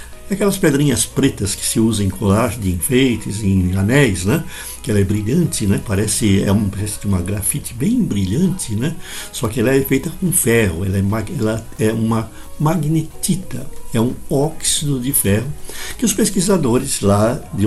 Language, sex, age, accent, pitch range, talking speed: Portuguese, male, 60-79, Brazilian, 105-155 Hz, 160 wpm